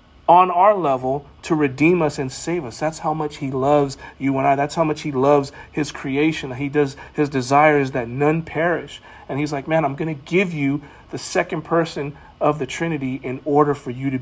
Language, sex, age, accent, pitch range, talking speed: English, male, 40-59, American, 130-160 Hz, 220 wpm